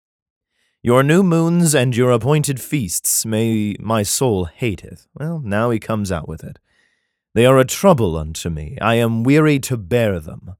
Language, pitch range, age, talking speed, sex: English, 90-135 Hz, 30-49, 170 wpm, male